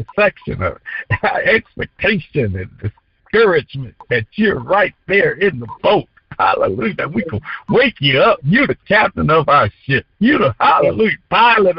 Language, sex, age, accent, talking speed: English, male, 60-79, American, 150 wpm